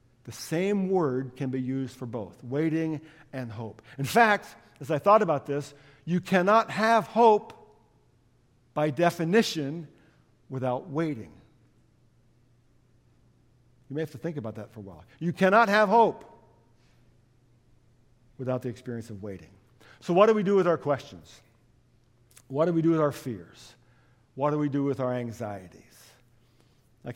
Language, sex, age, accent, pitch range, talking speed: English, male, 50-69, American, 120-160 Hz, 150 wpm